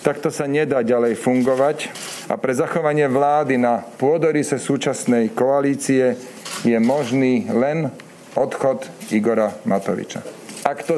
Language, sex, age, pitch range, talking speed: Slovak, male, 40-59, 130-165 Hz, 120 wpm